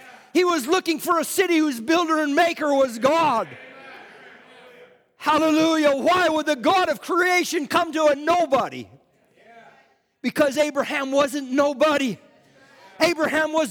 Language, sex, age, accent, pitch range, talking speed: English, male, 50-69, American, 295-345 Hz, 125 wpm